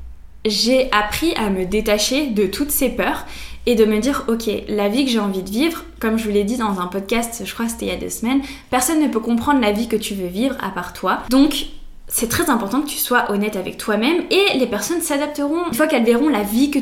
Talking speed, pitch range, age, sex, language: 255 wpm, 205-255 Hz, 10-29, female, French